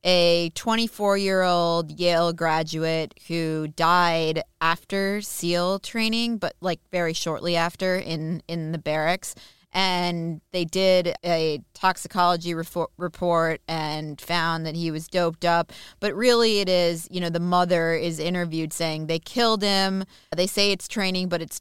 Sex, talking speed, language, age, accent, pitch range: female, 140 wpm, English, 20-39, American, 165-190 Hz